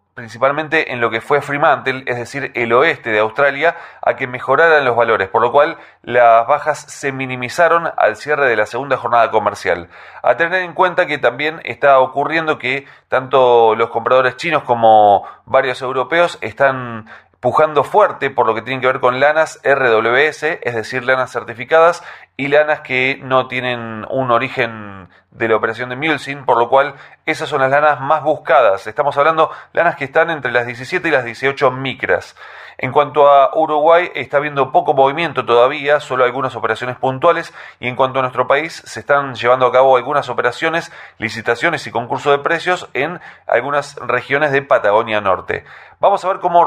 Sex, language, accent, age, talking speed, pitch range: male, Spanish, Argentinian, 30-49, 175 wpm, 125-155 Hz